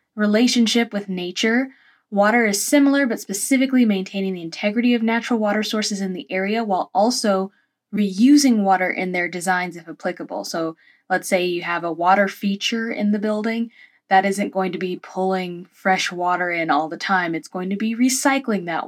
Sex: female